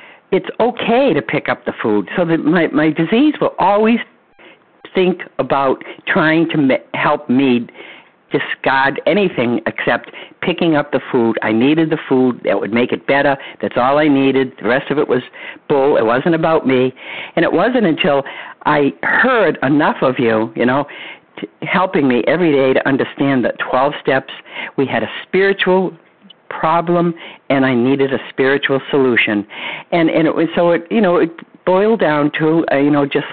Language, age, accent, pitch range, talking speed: English, 50-69, American, 130-170 Hz, 180 wpm